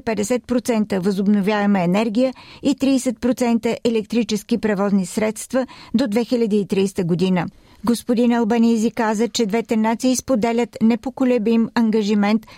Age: 40-59